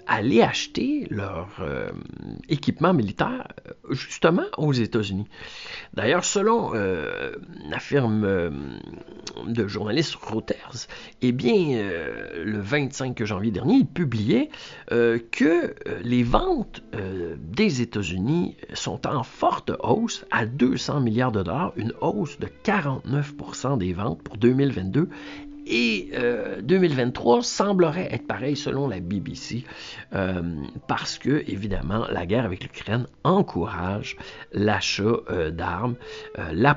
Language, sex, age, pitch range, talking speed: French, male, 50-69, 100-145 Hz, 120 wpm